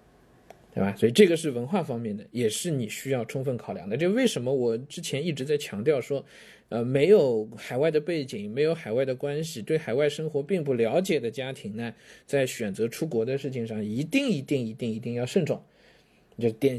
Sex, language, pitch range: male, Chinese, 125-170 Hz